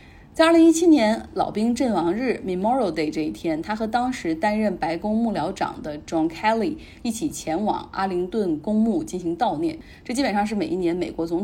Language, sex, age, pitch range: Chinese, female, 30-49, 170-250 Hz